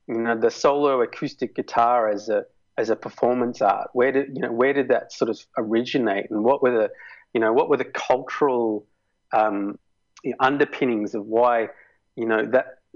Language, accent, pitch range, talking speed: English, Australian, 110-140 Hz, 190 wpm